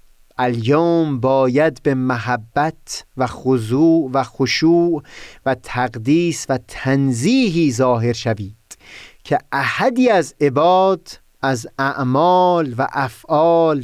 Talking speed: 95 wpm